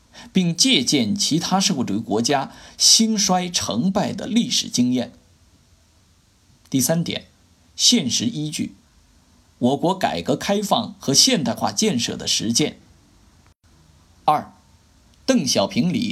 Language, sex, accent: Chinese, male, native